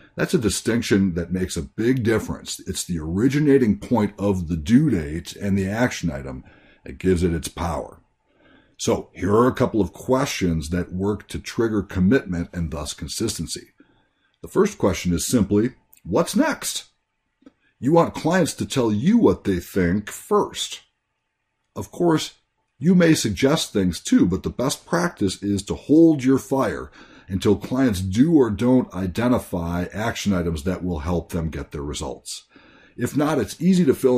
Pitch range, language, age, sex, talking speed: 85-120 Hz, English, 60-79, male, 165 wpm